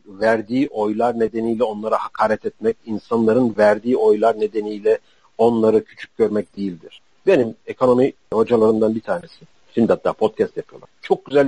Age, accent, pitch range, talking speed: 50-69, native, 115-150 Hz, 130 wpm